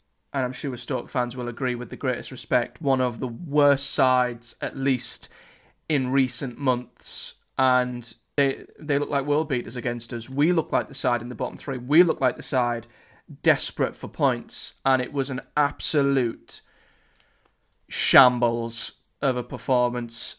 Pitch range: 125-140 Hz